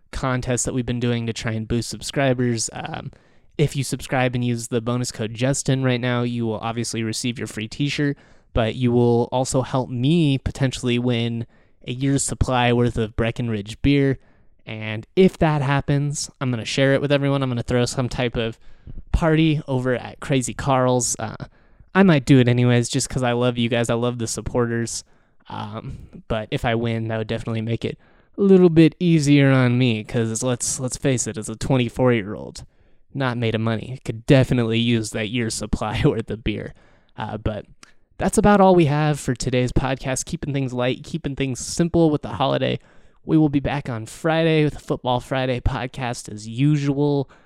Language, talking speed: English, 195 wpm